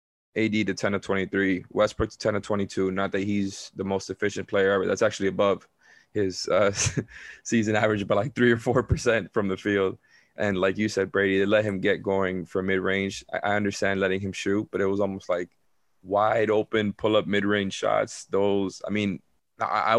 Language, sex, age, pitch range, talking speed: English, male, 20-39, 95-105 Hz, 195 wpm